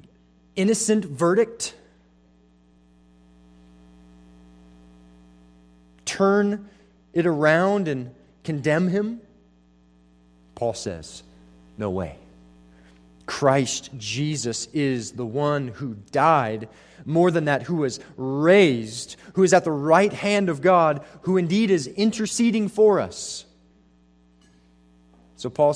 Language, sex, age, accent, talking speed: English, male, 30-49, American, 95 wpm